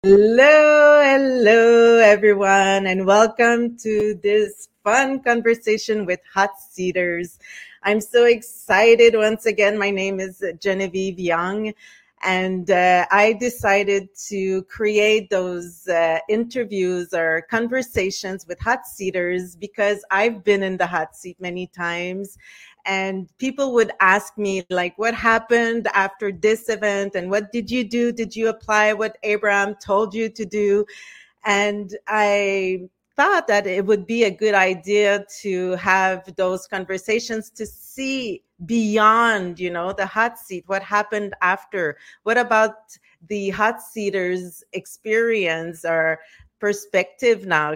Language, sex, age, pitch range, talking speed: English, female, 30-49, 185-225 Hz, 130 wpm